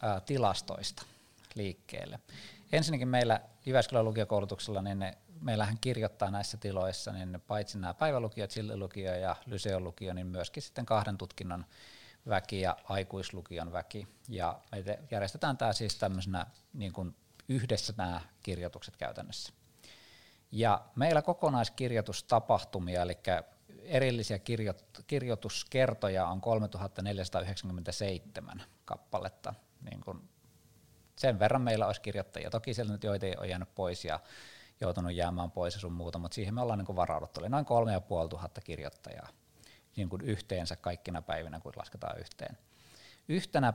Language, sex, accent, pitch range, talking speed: Finnish, male, native, 90-110 Hz, 125 wpm